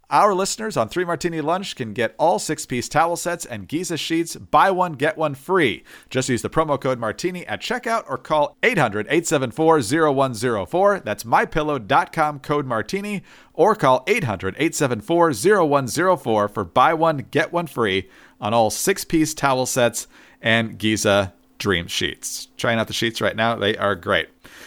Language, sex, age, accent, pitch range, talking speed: English, male, 40-59, American, 120-170 Hz, 150 wpm